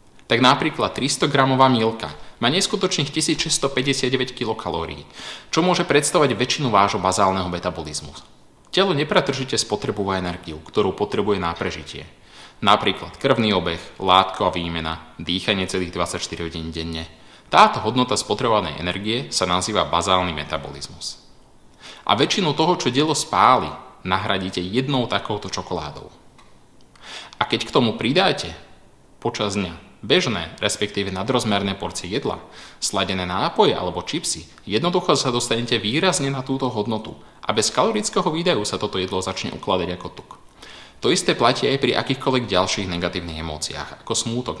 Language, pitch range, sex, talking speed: Slovak, 90-135 Hz, male, 130 wpm